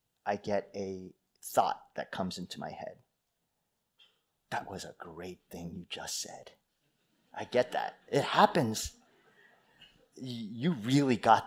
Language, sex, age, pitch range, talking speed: English, male, 30-49, 115-175 Hz, 135 wpm